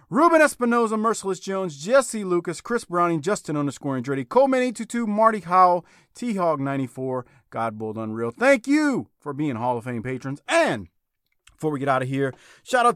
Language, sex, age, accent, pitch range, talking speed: English, male, 30-49, American, 125-205 Hz, 165 wpm